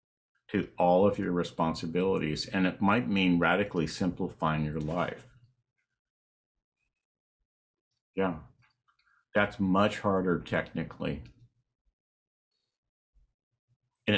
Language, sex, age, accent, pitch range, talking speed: English, male, 50-69, American, 80-105 Hz, 80 wpm